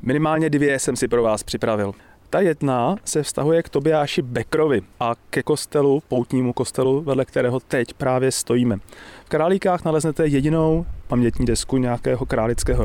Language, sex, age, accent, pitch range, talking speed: Czech, male, 30-49, native, 120-145 Hz, 150 wpm